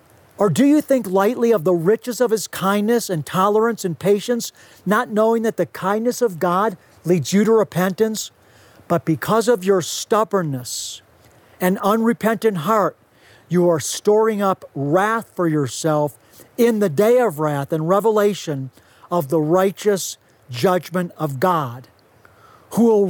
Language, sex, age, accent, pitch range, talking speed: English, male, 50-69, American, 155-220 Hz, 145 wpm